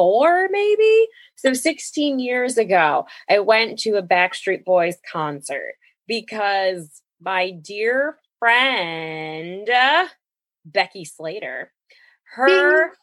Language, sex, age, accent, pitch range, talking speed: English, female, 20-39, American, 205-305 Hz, 90 wpm